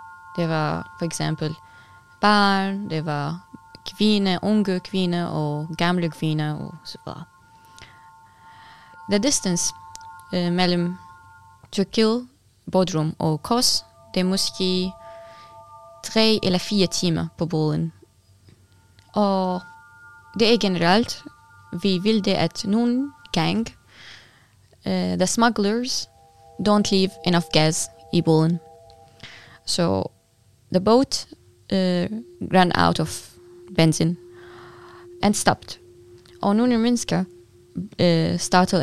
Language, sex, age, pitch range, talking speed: Danish, female, 20-39, 130-185 Hz, 105 wpm